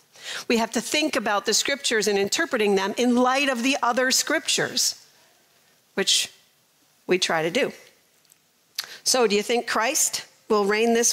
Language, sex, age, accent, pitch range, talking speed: English, female, 40-59, American, 200-260 Hz, 155 wpm